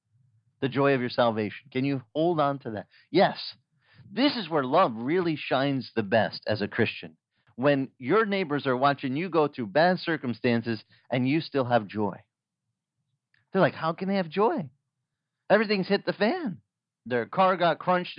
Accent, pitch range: American, 115-160 Hz